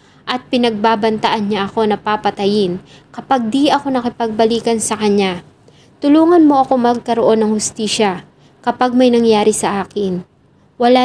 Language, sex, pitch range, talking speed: English, female, 210-255 Hz, 130 wpm